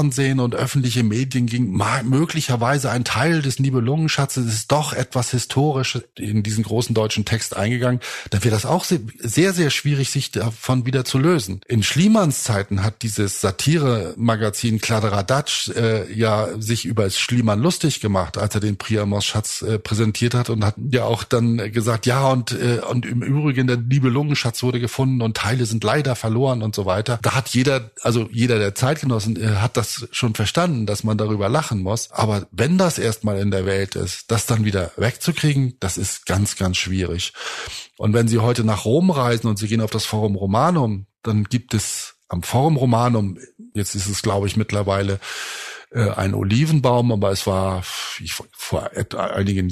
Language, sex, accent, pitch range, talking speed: German, male, German, 105-130 Hz, 175 wpm